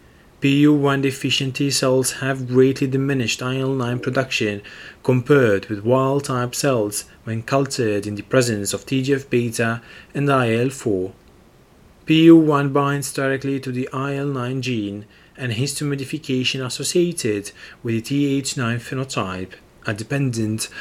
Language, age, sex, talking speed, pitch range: English, 30-49, male, 110 wpm, 115-140 Hz